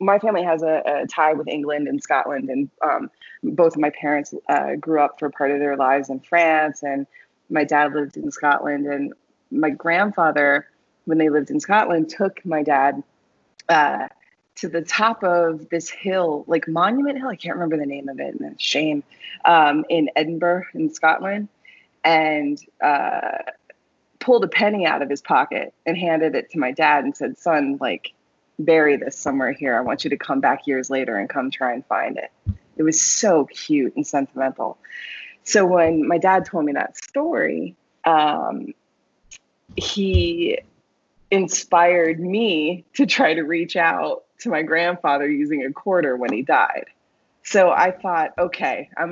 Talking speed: 175 wpm